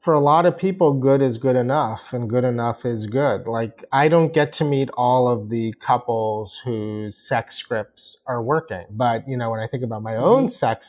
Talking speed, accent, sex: 215 wpm, American, male